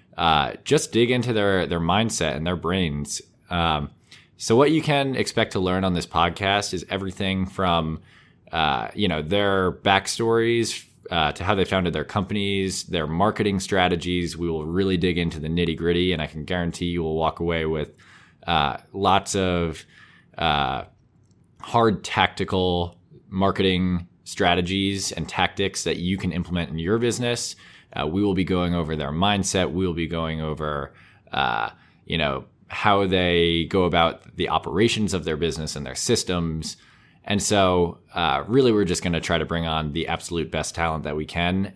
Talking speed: 170 wpm